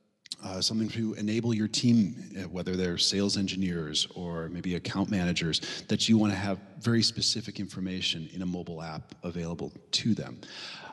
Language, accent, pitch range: English, American, 95-120 Hz